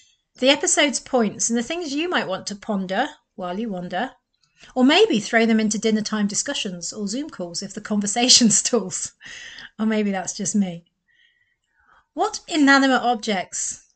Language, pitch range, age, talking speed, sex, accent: English, 200-265 Hz, 40-59, 160 wpm, female, British